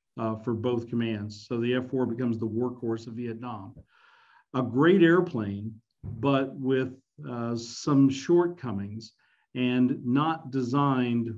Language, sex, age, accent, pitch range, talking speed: English, male, 50-69, American, 115-135 Hz, 125 wpm